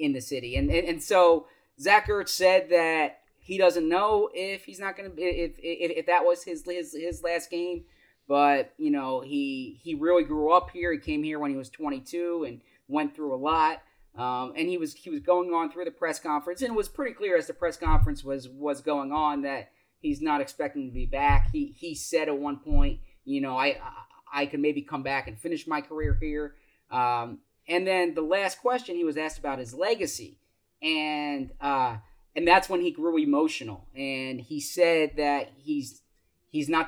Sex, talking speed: male, 210 wpm